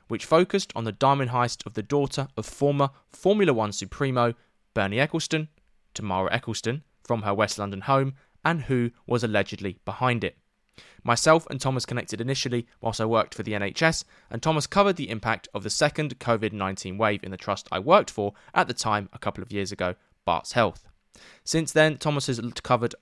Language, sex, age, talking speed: English, male, 20-39, 185 wpm